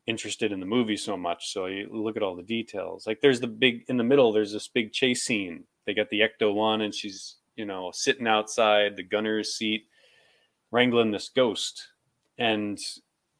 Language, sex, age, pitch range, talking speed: English, male, 20-39, 110-150 Hz, 195 wpm